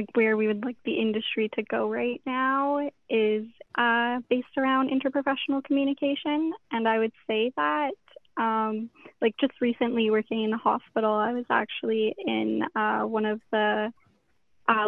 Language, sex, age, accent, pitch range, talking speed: English, female, 10-29, American, 220-245 Hz, 155 wpm